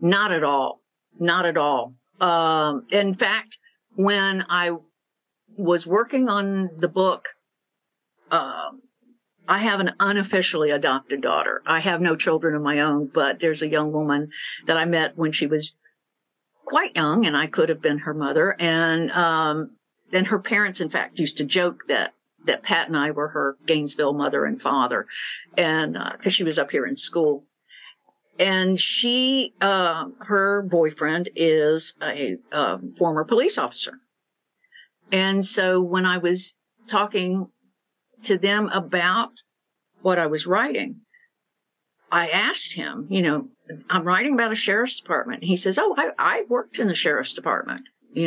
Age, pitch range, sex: 50-69, 160-210 Hz, female